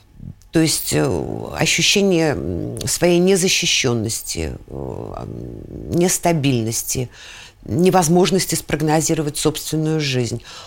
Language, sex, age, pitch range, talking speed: Russian, female, 50-69, 125-165 Hz, 55 wpm